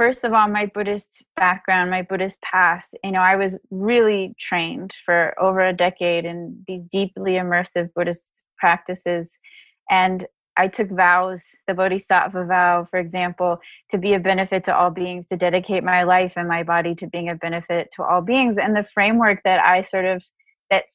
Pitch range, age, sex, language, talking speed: 175-195 Hz, 20-39, female, English, 180 wpm